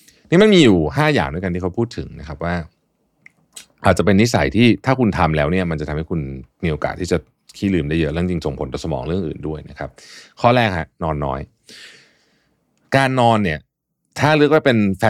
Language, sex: Thai, male